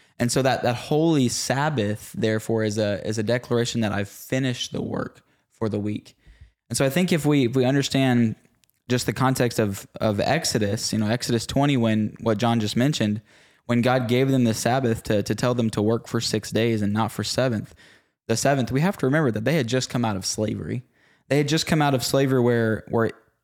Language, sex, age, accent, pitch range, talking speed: English, male, 10-29, American, 110-130 Hz, 220 wpm